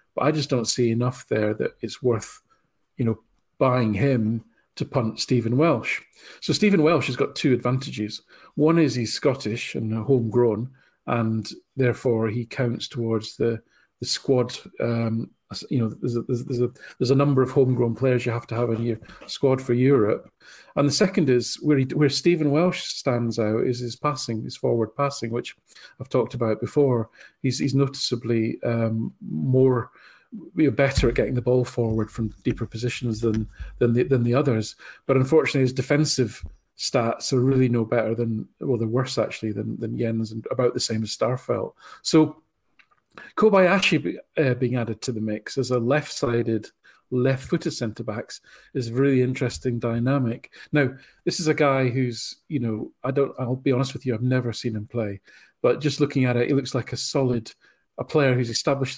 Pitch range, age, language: 115-135 Hz, 40-59, English